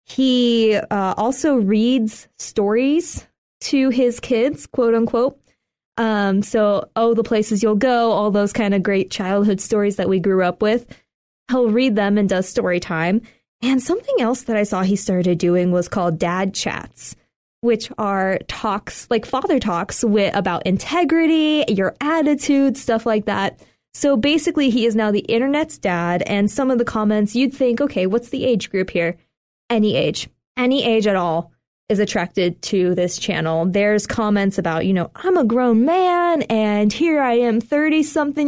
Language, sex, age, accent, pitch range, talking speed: English, female, 20-39, American, 200-255 Hz, 170 wpm